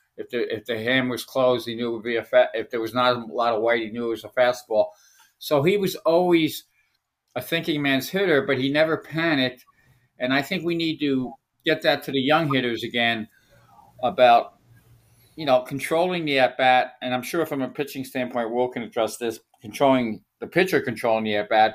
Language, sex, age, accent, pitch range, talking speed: English, male, 50-69, American, 120-150 Hz, 210 wpm